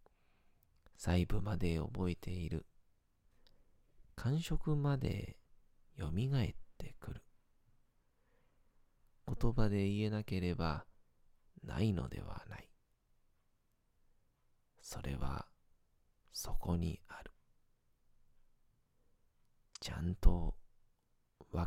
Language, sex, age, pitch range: Japanese, male, 40-59, 80-105 Hz